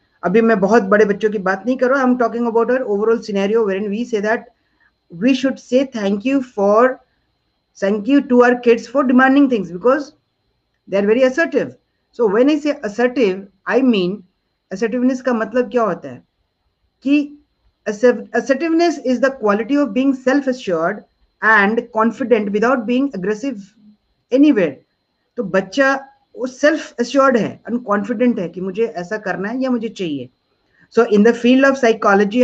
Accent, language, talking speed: native, Hindi, 115 wpm